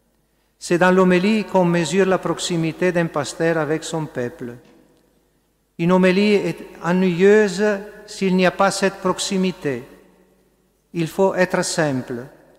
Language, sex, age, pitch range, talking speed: French, male, 50-69, 155-180 Hz, 125 wpm